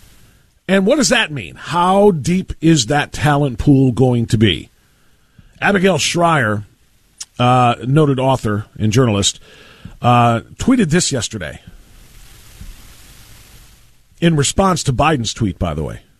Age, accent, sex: 40-59, American, male